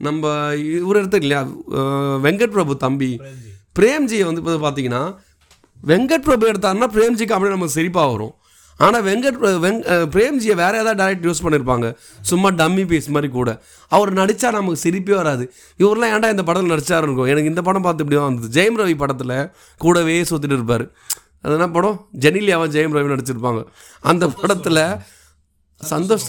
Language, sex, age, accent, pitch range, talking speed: Tamil, male, 30-49, native, 145-195 Hz, 145 wpm